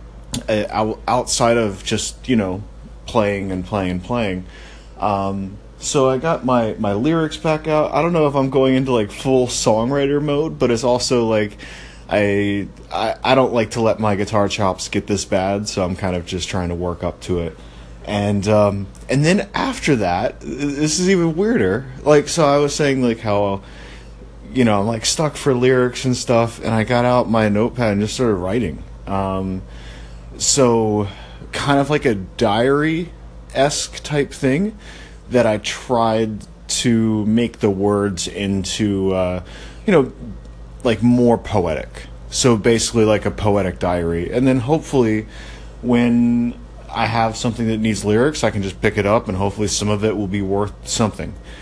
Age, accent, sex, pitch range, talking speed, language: 30-49, American, male, 90-125 Hz, 170 wpm, English